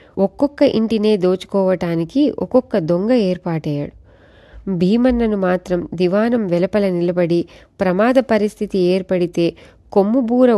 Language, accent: Telugu, native